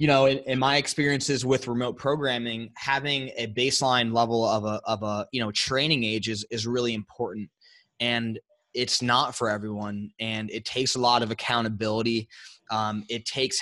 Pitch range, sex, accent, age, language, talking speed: 115-130 Hz, male, American, 20-39, English, 175 wpm